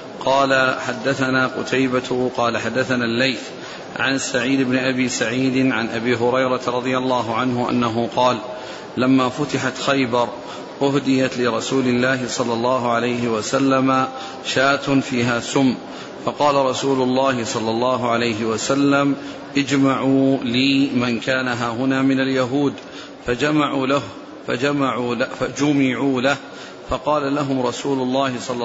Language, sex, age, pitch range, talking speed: Arabic, male, 40-59, 125-140 Hz, 120 wpm